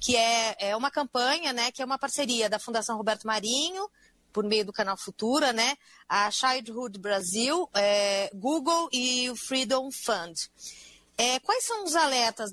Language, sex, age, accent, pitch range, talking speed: Portuguese, female, 30-49, Brazilian, 205-260 Hz, 160 wpm